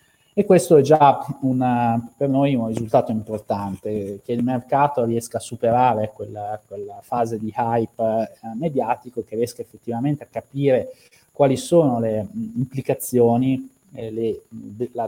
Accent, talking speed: native, 140 wpm